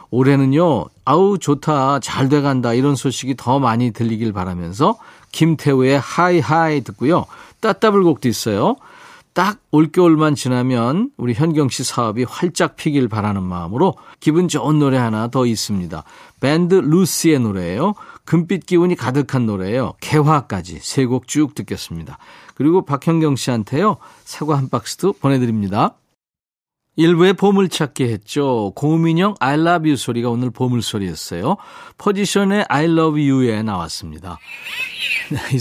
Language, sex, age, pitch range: Korean, male, 40-59, 115-165 Hz